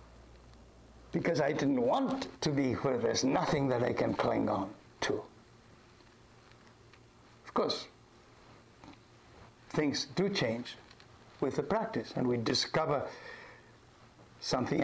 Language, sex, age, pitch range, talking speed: English, male, 60-79, 120-175 Hz, 110 wpm